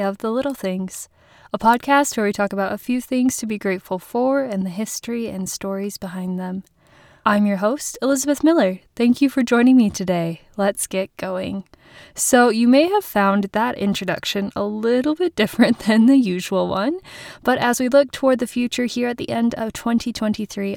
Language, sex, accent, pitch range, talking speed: English, female, American, 195-240 Hz, 190 wpm